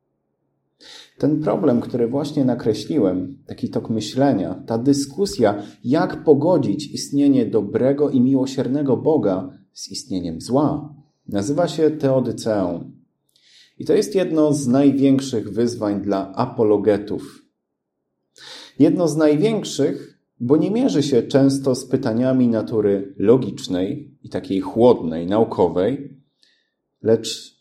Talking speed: 105 wpm